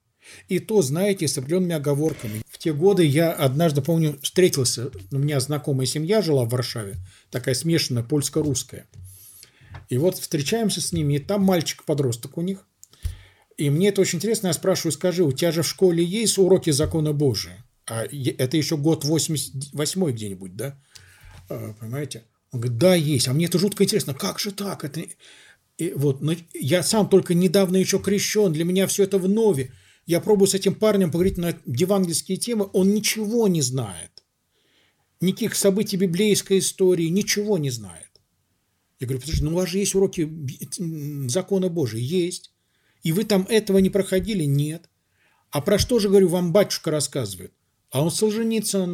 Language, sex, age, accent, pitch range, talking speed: Russian, male, 50-69, native, 135-190 Hz, 165 wpm